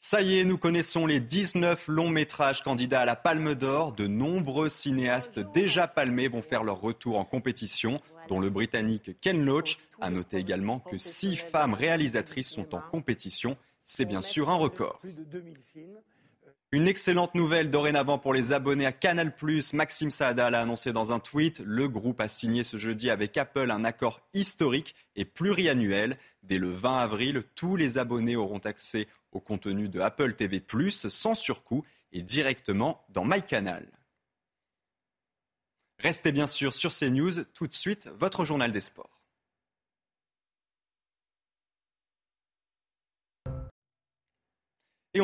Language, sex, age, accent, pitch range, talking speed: French, male, 30-49, French, 115-160 Hz, 140 wpm